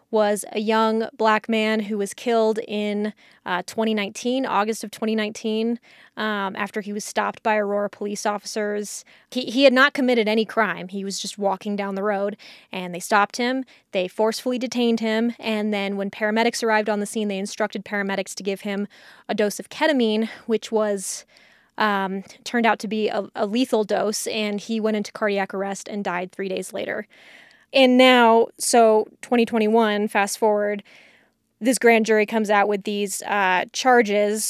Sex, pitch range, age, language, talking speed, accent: female, 205-230 Hz, 20-39, English, 175 wpm, American